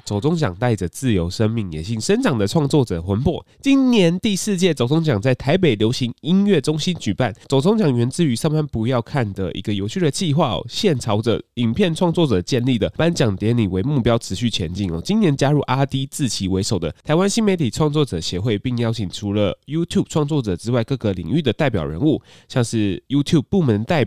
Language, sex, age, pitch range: Chinese, male, 20-39, 110-160 Hz